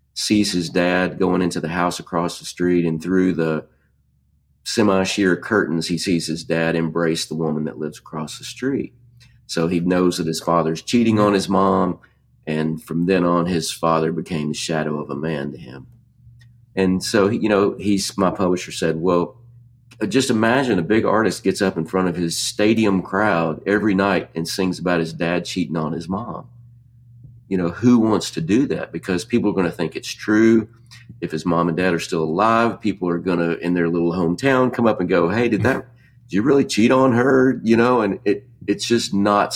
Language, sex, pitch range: English, male, 85-115 Hz